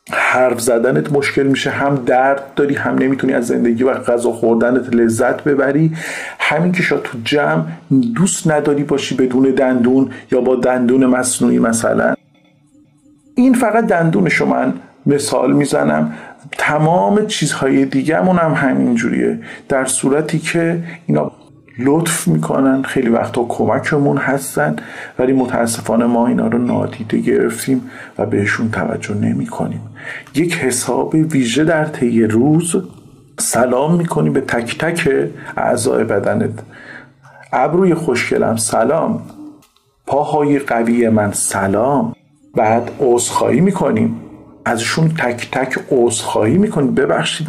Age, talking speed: 50-69, 115 wpm